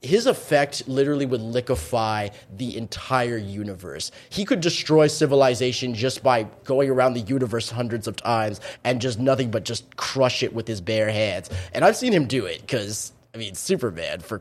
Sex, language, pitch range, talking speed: male, English, 115-165 Hz, 180 wpm